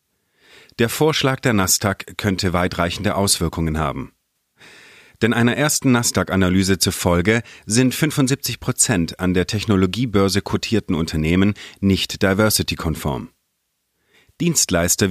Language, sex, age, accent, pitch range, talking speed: German, male, 40-59, German, 90-115 Hz, 90 wpm